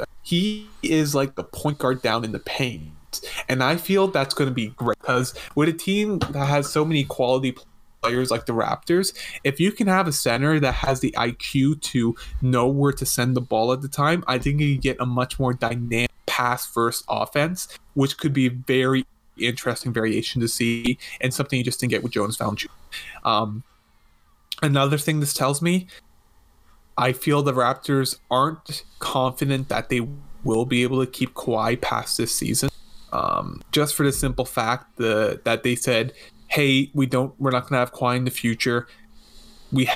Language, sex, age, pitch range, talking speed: English, male, 20-39, 120-140 Hz, 185 wpm